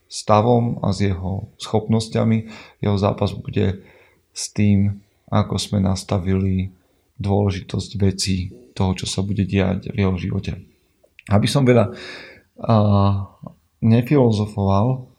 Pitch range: 95-110 Hz